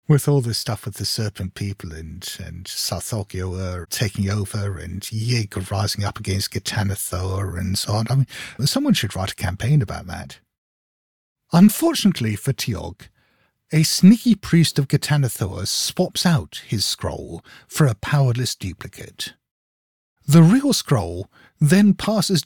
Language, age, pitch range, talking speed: English, 60-79, 105-165 Hz, 140 wpm